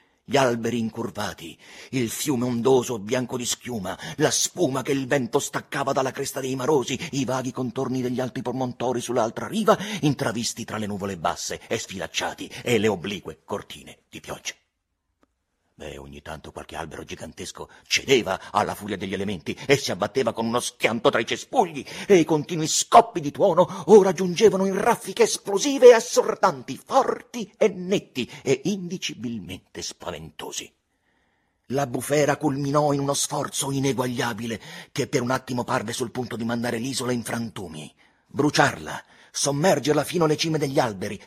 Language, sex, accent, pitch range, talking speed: Italian, male, native, 105-145 Hz, 155 wpm